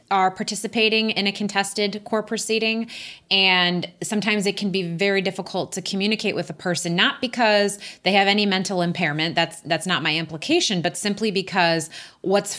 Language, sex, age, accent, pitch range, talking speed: English, female, 30-49, American, 170-200 Hz, 165 wpm